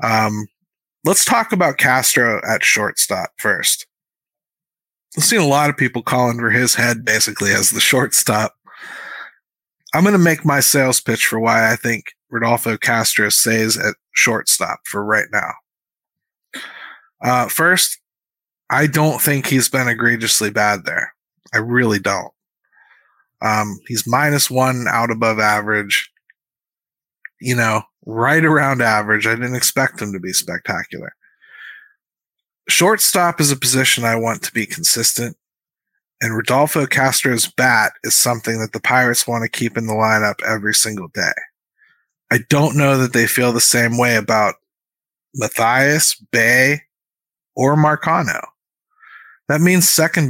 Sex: male